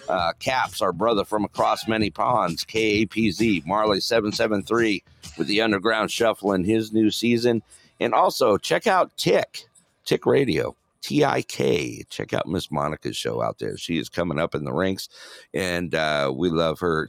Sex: male